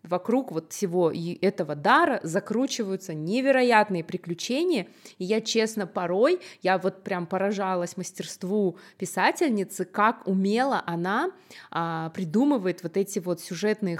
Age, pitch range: 20-39, 185-235 Hz